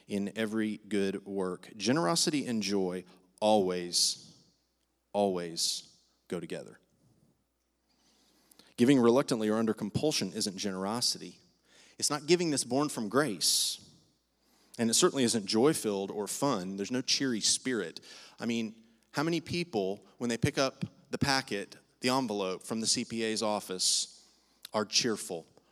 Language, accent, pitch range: English, American, 100-130 Hz